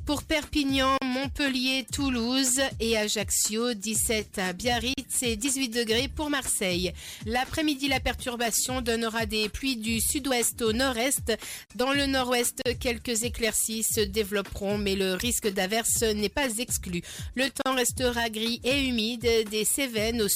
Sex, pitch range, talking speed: female, 225-270 Hz, 140 wpm